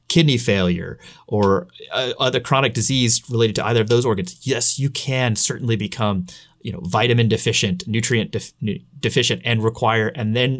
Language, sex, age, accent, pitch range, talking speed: English, male, 30-49, American, 105-120 Hz, 170 wpm